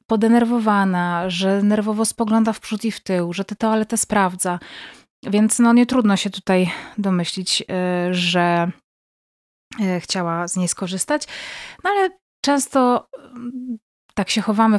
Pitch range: 185-235 Hz